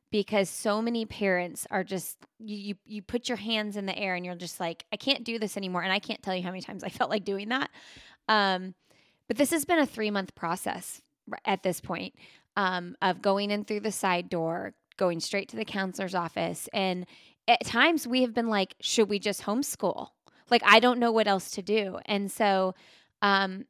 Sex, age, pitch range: female, 20-39, 185-220 Hz